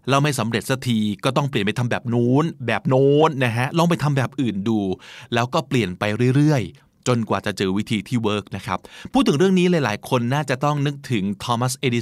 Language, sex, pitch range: Thai, male, 115-155 Hz